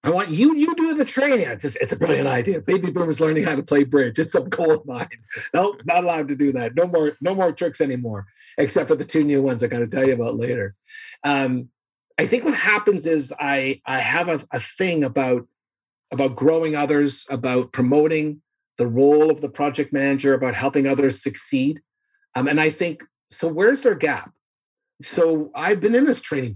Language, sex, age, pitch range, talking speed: English, male, 40-59, 140-215 Hz, 205 wpm